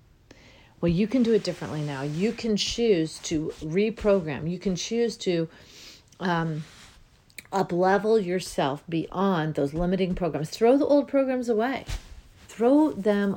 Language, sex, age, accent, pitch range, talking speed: English, female, 40-59, American, 155-205 Hz, 135 wpm